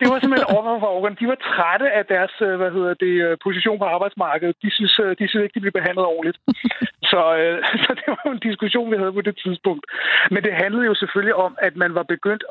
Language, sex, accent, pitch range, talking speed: Danish, male, native, 175-210 Hz, 215 wpm